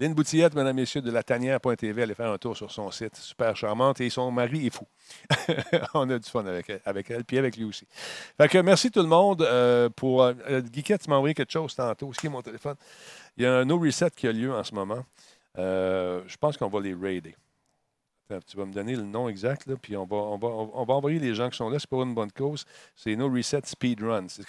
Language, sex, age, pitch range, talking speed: French, male, 50-69, 110-140 Hz, 245 wpm